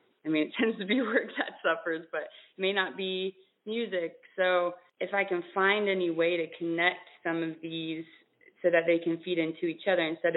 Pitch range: 155-175 Hz